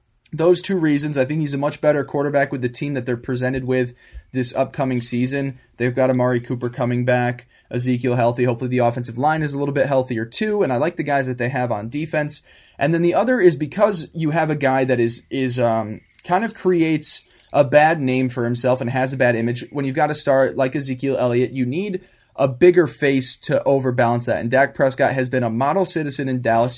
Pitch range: 125-155 Hz